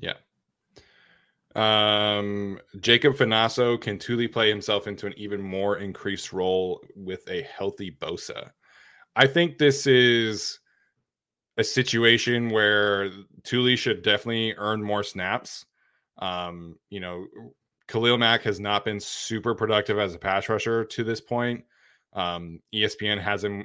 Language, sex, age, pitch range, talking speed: English, male, 20-39, 100-115 Hz, 130 wpm